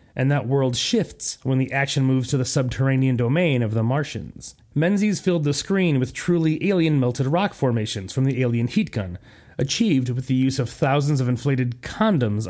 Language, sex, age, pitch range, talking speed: English, male, 30-49, 125-155 Hz, 185 wpm